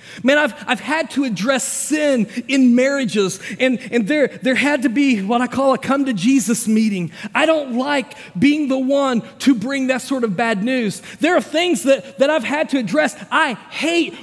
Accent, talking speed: American, 195 wpm